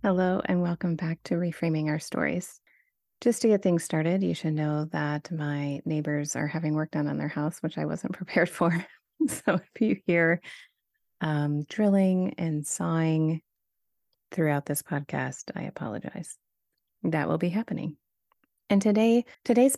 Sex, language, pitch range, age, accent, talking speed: female, English, 155-190 Hz, 30-49, American, 155 wpm